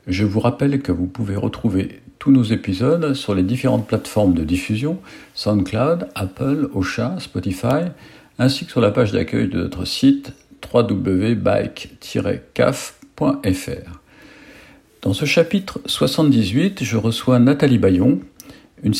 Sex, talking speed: male, 125 wpm